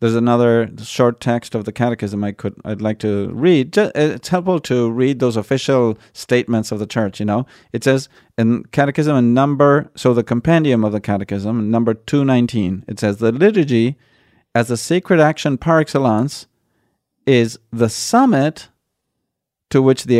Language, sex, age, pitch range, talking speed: English, male, 40-59, 110-135 Hz, 165 wpm